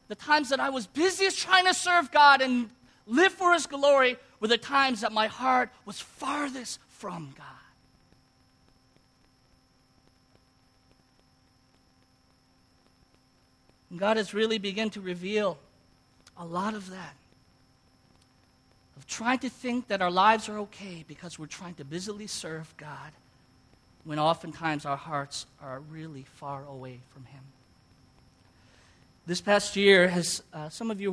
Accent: American